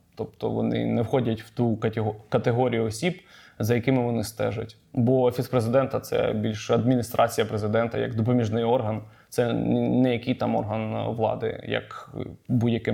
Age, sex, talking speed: 20-39, male, 150 wpm